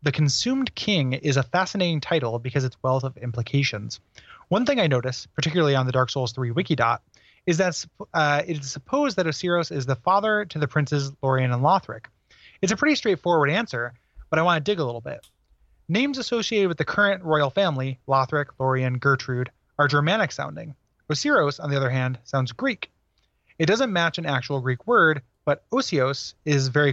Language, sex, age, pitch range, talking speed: English, male, 30-49, 130-170 Hz, 185 wpm